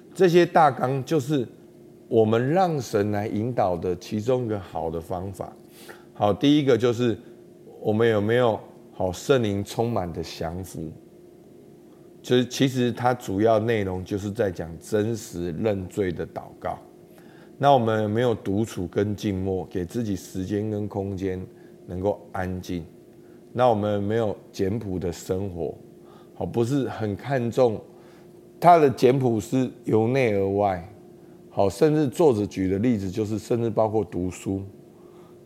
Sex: male